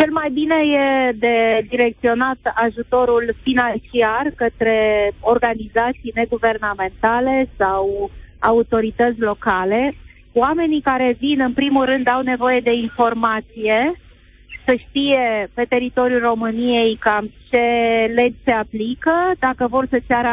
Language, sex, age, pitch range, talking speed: Romanian, female, 30-49, 230-270 Hz, 110 wpm